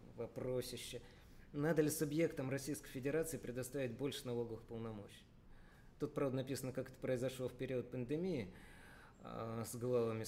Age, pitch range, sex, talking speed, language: 20-39, 120-145 Hz, male, 130 wpm, Russian